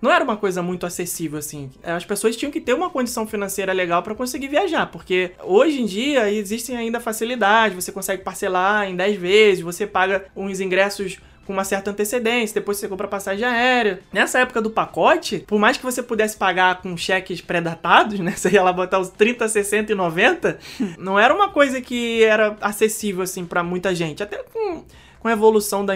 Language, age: Portuguese, 20-39